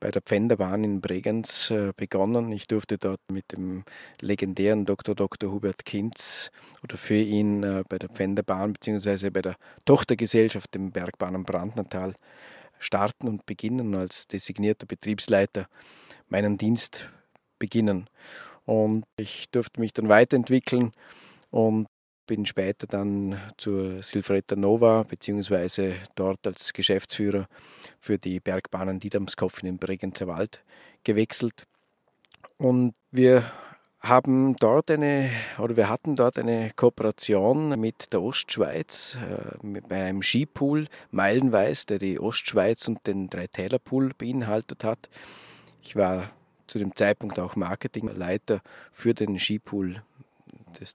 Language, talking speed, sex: German, 120 wpm, male